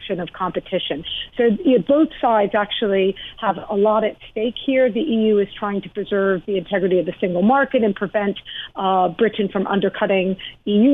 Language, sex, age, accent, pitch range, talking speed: English, female, 50-69, American, 190-220 Hz, 170 wpm